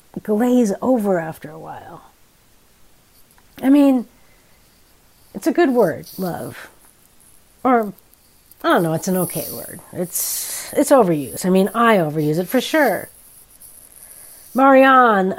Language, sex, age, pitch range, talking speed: English, female, 50-69, 190-270 Hz, 120 wpm